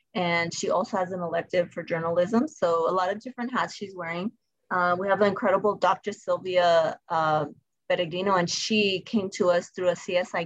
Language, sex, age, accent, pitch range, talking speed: English, female, 30-49, American, 170-200 Hz, 190 wpm